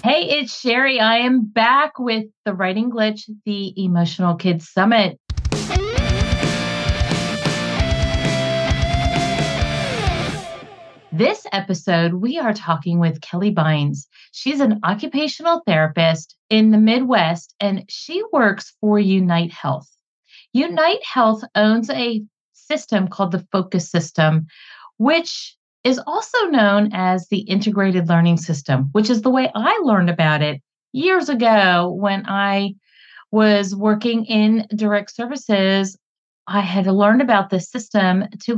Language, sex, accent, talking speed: English, female, American, 120 wpm